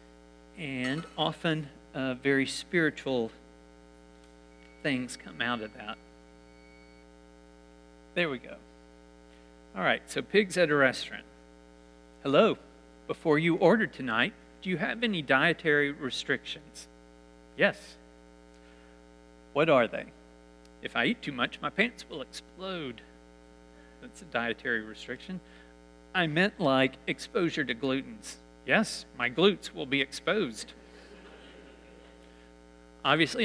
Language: English